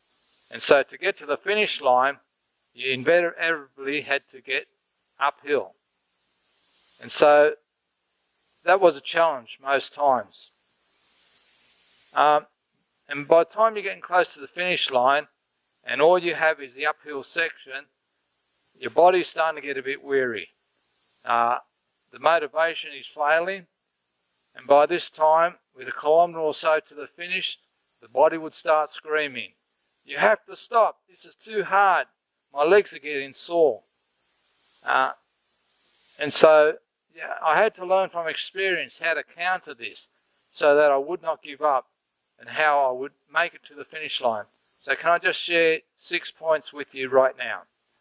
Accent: Australian